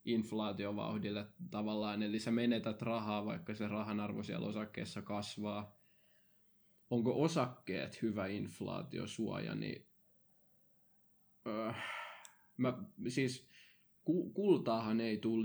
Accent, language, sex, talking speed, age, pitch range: native, Finnish, male, 95 wpm, 20-39, 105-115 Hz